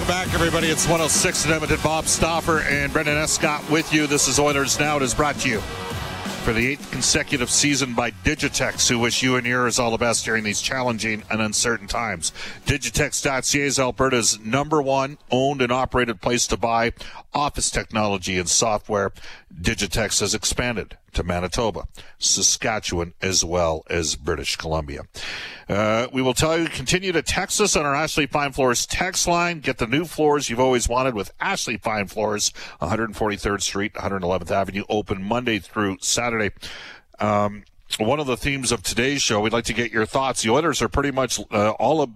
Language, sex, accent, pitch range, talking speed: English, male, American, 105-140 Hz, 180 wpm